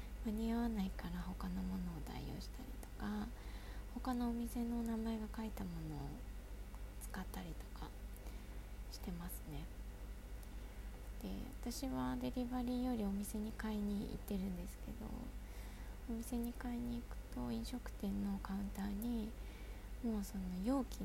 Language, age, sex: Japanese, 20-39, female